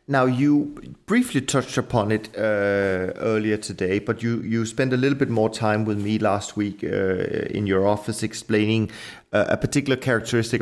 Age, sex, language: 30-49, male, English